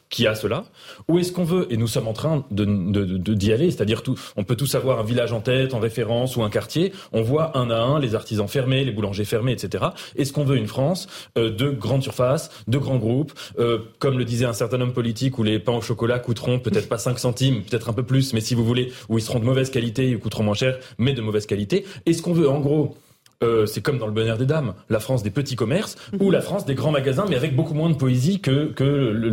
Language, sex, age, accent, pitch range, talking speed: French, male, 30-49, French, 115-150 Hz, 265 wpm